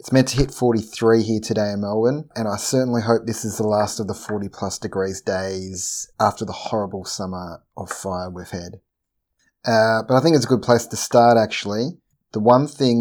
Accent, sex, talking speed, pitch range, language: Australian, male, 205 wpm, 105-120 Hz, English